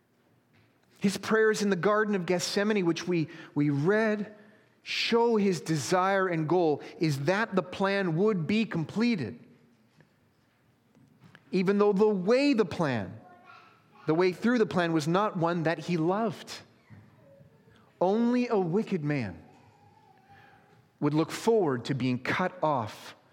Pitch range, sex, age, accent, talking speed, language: 135-185 Hz, male, 30-49, American, 130 wpm, English